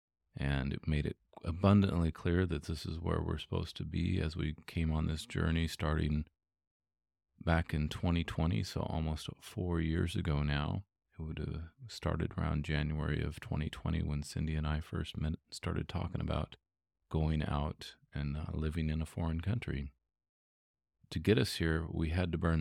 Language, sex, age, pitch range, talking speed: English, male, 40-59, 75-85 Hz, 165 wpm